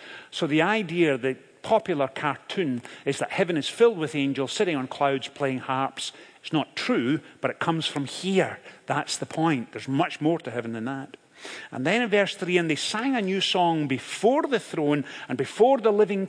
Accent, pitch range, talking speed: British, 130-180 Hz, 200 wpm